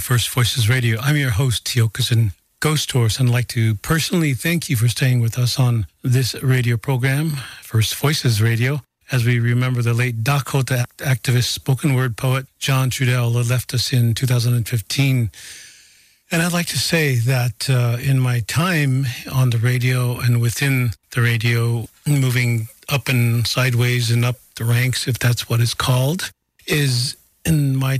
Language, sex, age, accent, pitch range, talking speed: English, male, 50-69, American, 120-135 Hz, 165 wpm